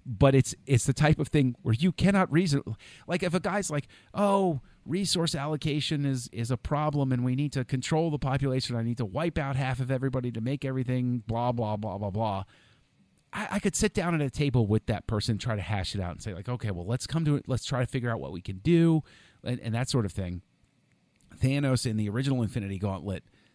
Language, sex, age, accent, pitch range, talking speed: English, male, 40-59, American, 100-135 Hz, 235 wpm